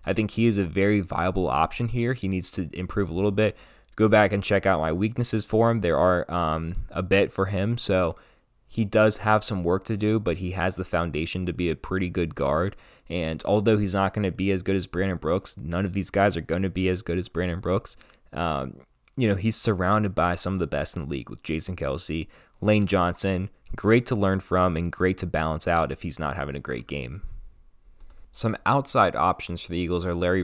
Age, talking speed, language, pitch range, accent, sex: 20-39, 235 wpm, English, 80-100 Hz, American, male